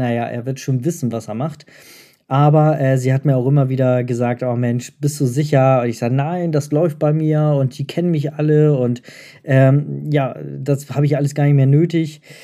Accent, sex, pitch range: German, male, 125-150 Hz